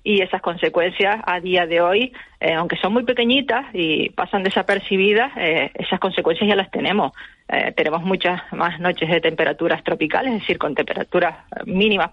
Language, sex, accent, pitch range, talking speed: Spanish, female, Spanish, 175-205 Hz, 170 wpm